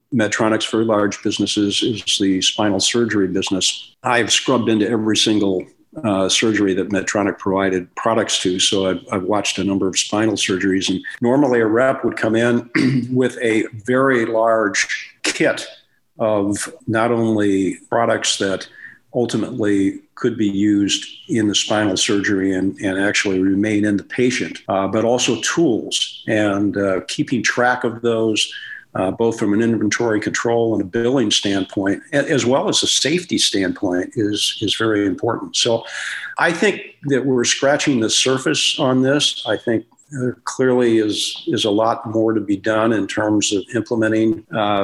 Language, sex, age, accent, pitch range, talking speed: English, male, 50-69, American, 100-120 Hz, 160 wpm